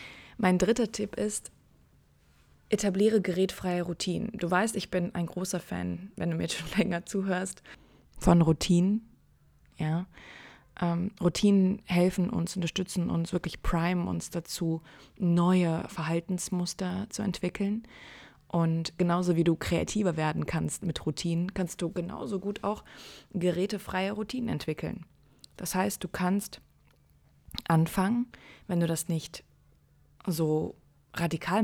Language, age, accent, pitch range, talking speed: German, 20-39, German, 160-190 Hz, 120 wpm